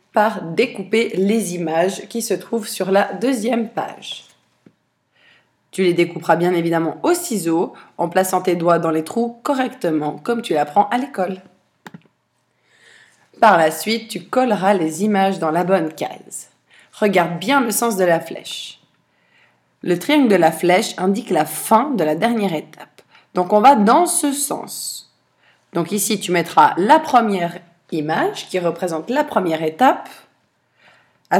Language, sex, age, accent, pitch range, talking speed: French, female, 20-39, French, 170-225 Hz, 155 wpm